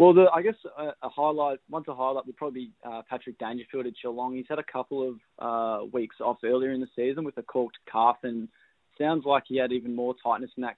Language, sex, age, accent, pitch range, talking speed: English, male, 20-39, Australian, 120-135 Hz, 245 wpm